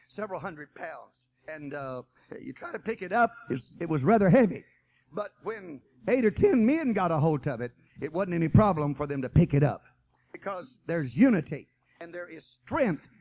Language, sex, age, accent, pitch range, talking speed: English, male, 60-79, American, 160-250 Hz, 200 wpm